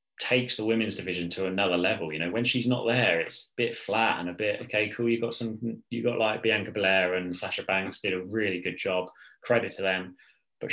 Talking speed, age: 235 wpm, 20-39